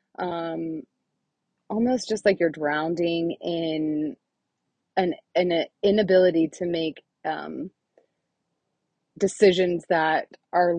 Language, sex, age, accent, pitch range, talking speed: English, female, 20-39, American, 155-180 Hz, 90 wpm